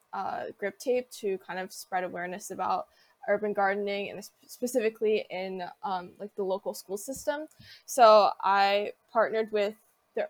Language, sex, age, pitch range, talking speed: English, female, 10-29, 190-225 Hz, 145 wpm